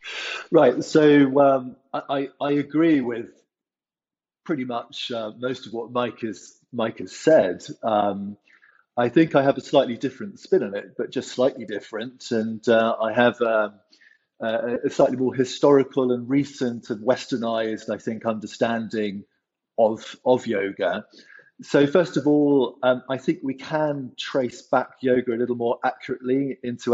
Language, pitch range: English, 115-140 Hz